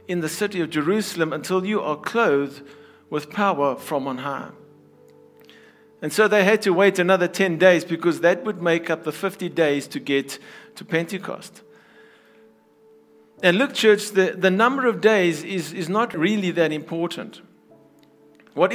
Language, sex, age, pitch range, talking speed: English, male, 60-79, 170-215 Hz, 160 wpm